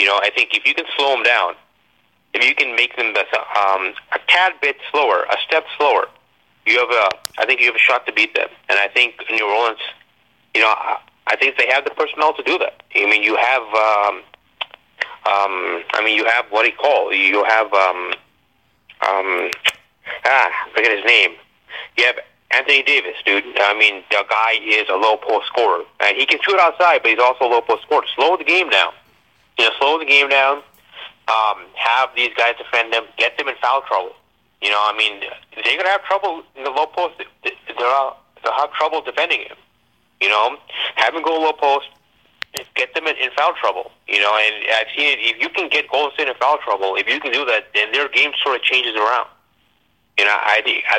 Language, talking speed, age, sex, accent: English, 215 wpm, 30-49, male, American